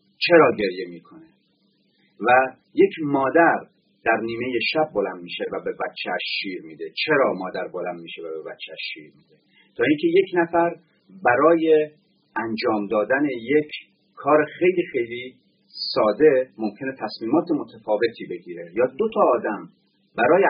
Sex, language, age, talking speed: male, Persian, 40-59, 135 wpm